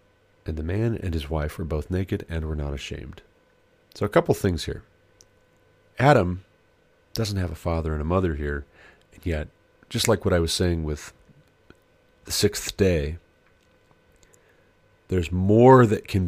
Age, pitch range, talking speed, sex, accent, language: 40-59, 75-95 Hz, 160 wpm, male, American, English